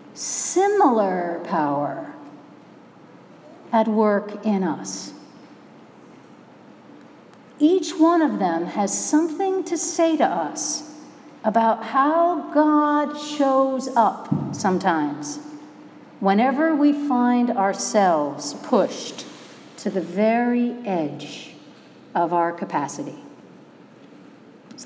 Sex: female